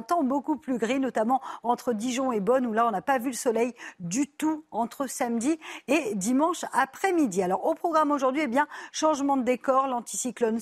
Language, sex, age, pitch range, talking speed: French, female, 40-59, 230-280 Hz, 190 wpm